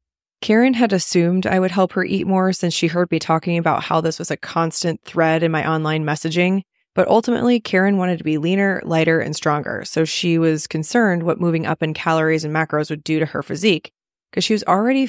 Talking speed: 220 wpm